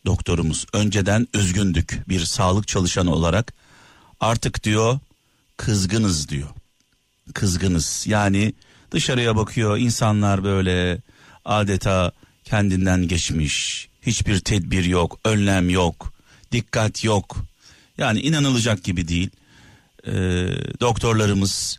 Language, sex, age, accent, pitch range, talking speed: Turkish, male, 50-69, native, 95-125 Hz, 90 wpm